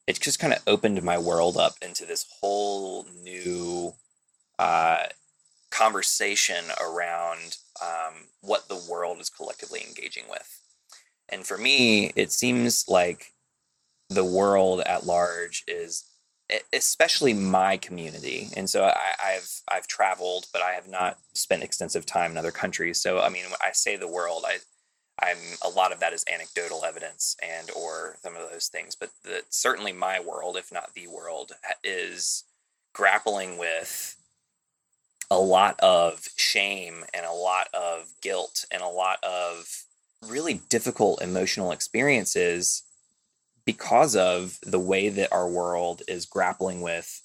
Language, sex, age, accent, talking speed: English, male, 20-39, American, 145 wpm